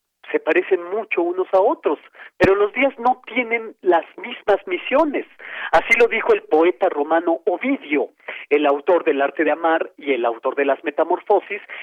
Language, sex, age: Spanish, male, 40-59